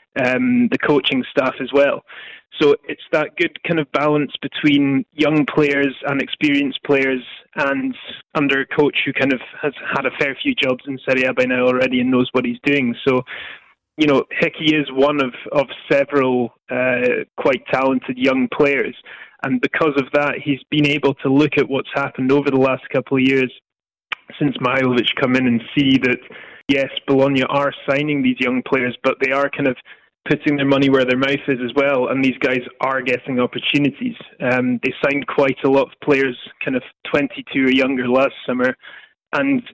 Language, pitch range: English, 130-150 Hz